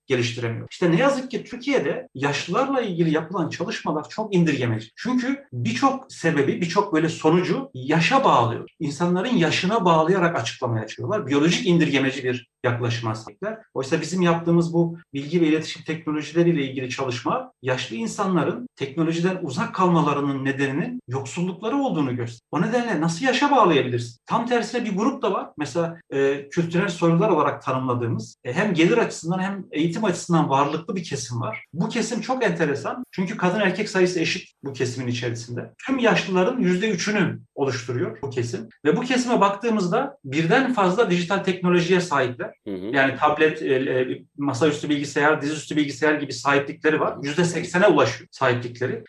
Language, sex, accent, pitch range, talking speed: Turkish, male, native, 140-190 Hz, 140 wpm